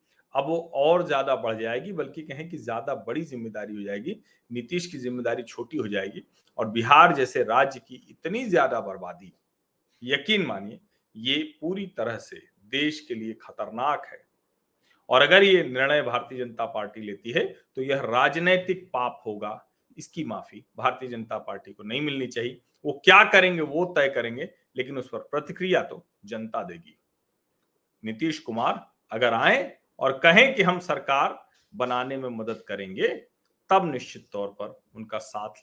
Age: 40-59